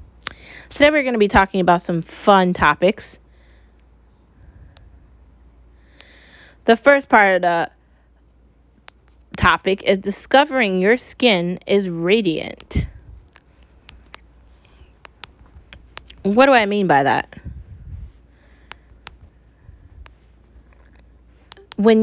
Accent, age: American, 20-39